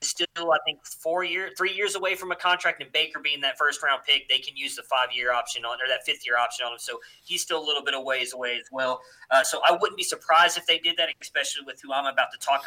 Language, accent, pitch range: English, American, 135-180 Hz